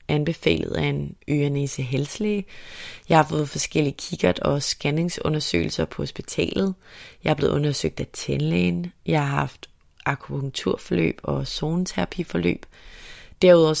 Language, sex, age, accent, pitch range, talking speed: Danish, female, 30-49, native, 135-170 Hz, 115 wpm